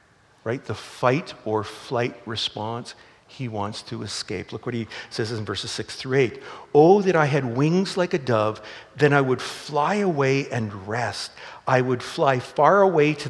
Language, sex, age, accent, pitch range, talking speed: English, male, 50-69, American, 110-140 Hz, 180 wpm